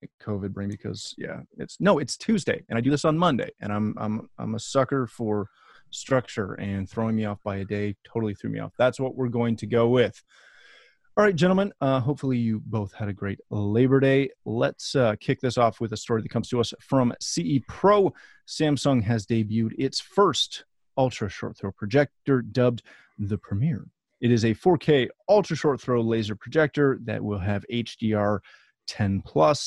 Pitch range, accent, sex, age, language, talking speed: 105-135 Hz, American, male, 30-49, English, 190 wpm